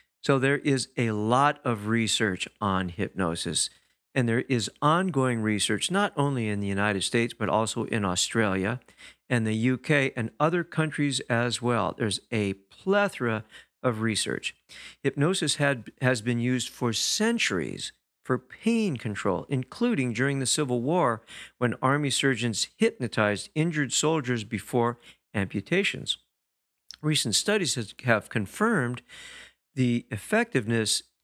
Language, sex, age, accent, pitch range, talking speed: English, male, 50-69, American, 110-145 Hz, 125 wpm